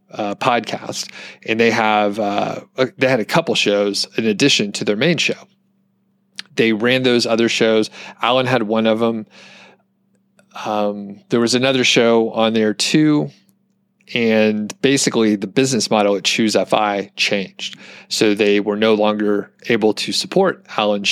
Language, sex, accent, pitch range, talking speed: English, male, American, 105-125 Hz, 150 wpm